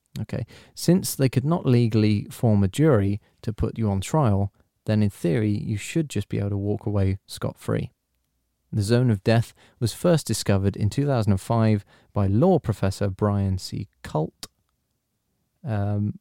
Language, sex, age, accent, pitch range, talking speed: English, male, 30-49, British, 100-125 Hz, 155 wpm